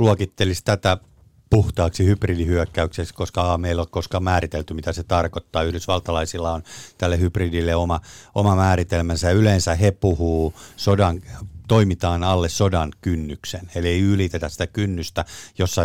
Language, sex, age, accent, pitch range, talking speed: Finnish, male, 50-69, native, 85-95 Hz, 125 wpm